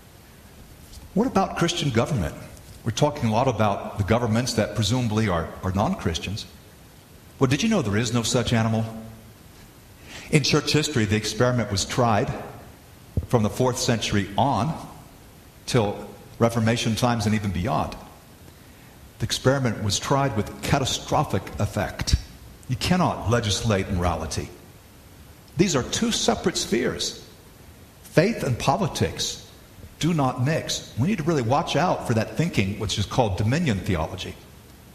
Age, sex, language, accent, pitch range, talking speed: 50-69, male, English, American, 100-130 Hz, 135 wpm